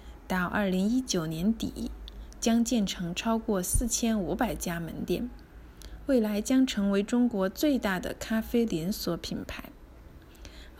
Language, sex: Chinese, female